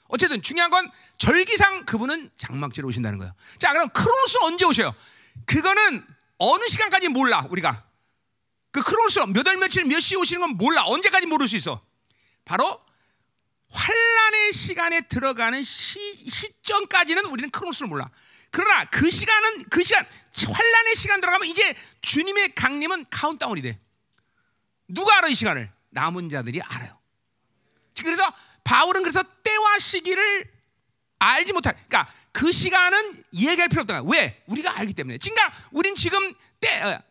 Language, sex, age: Korean, male, 40-59